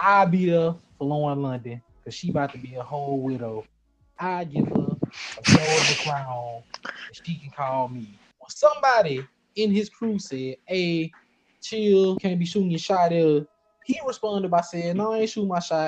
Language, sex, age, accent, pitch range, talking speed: English, male, 20-39, American, 140-205 Hz, 180 wpm